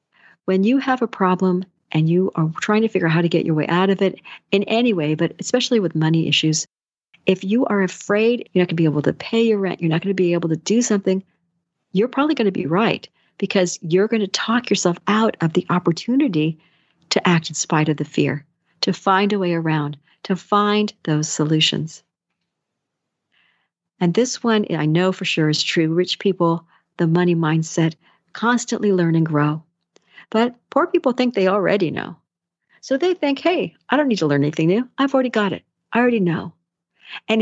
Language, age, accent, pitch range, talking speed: English, 50-69, American, 165-220 Hz, 205 wpm